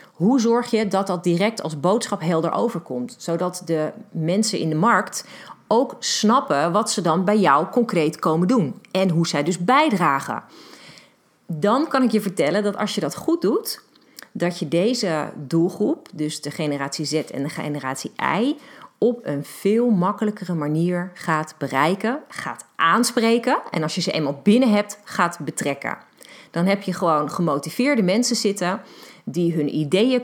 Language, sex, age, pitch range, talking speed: Dutch, female, 40-59, 165-225 Hz, 165 wpm